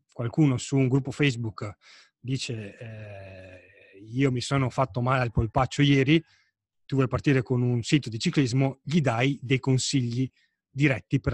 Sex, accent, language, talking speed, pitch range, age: male, native, Italian, 155 wpm, 115-140 Hz, 30-49